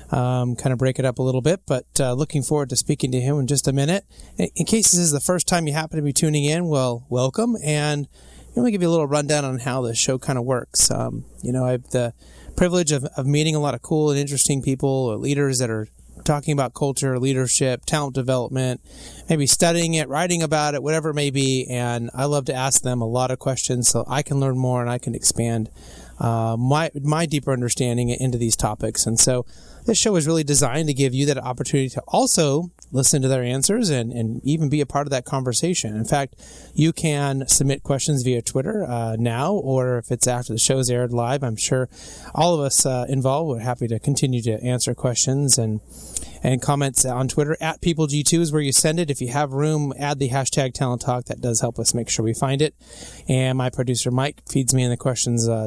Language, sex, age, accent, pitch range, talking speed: English, male, 30-49, American, 125-150 Hz, 235 wpm